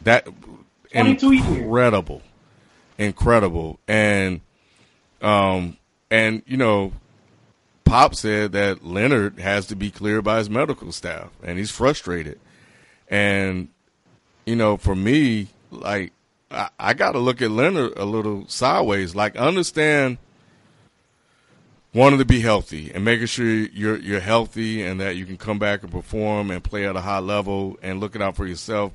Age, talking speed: 30-49, 145 wpm